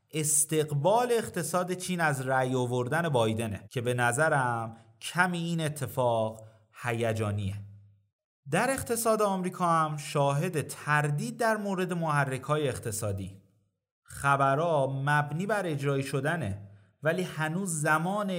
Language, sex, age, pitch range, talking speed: Persian, male, 30-49, 120-175 Hz, 105 wpm